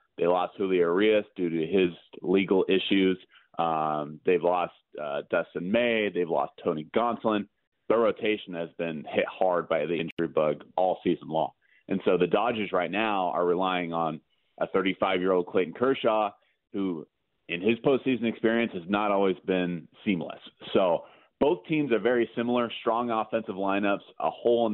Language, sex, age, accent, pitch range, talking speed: English, male, 30-49, American, 90-115 Hz, 165 wpm